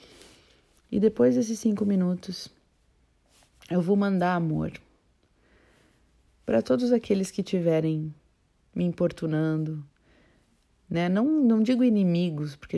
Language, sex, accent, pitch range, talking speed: Portuguese, female, Brazilian, 145-190 Hz, 105 wpm